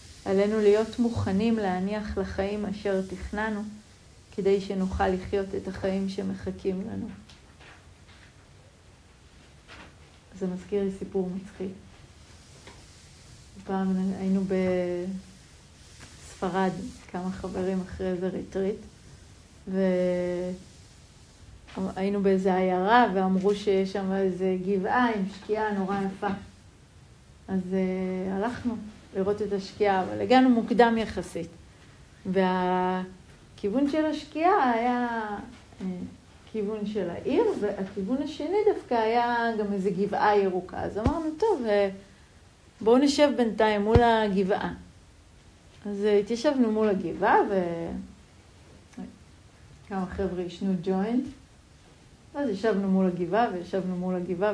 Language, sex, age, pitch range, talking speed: Hebrew, female, 30-49, 185-215 Hz, 95 wpm